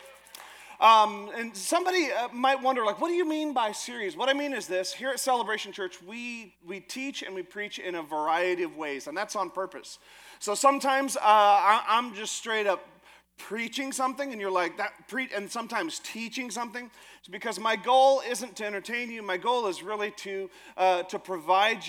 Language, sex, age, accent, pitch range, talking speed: English, male, 40-59, American, 185-240 Hz, 195 wpm